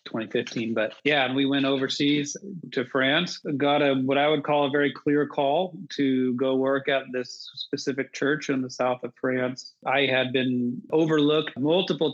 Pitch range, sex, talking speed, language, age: 125-145 Hz, male, 180 wpm, English, 30-49